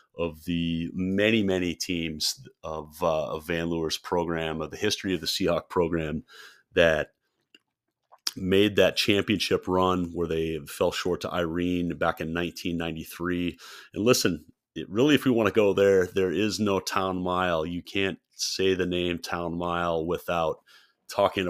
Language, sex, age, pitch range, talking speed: English, male, 30-49, 80-95 Hz, 155 wpm